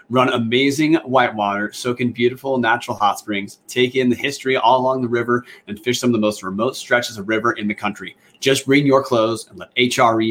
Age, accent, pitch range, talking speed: 30-49, American, 105-130 Hz, 215 wpm